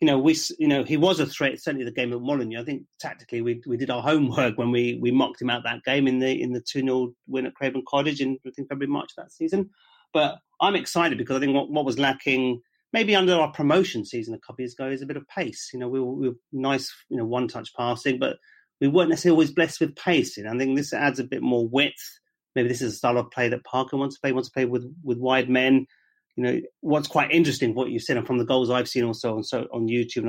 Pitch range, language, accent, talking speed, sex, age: 120-145 Hz, English, British, 275 wpm, male, 30-49